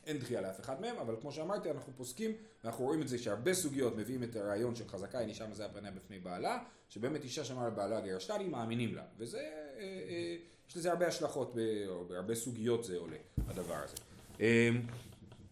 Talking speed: 195 wpm